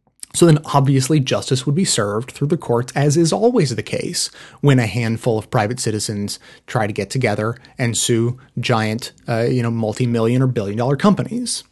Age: 30-49